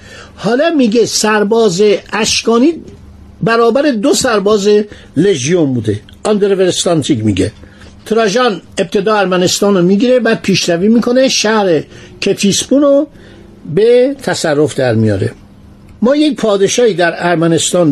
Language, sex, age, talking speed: Persian, male, 60-79, 95 wpm